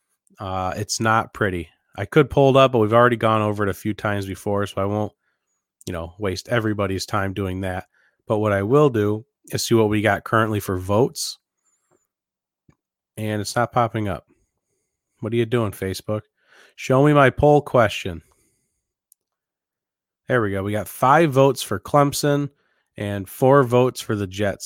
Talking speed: 175 wpm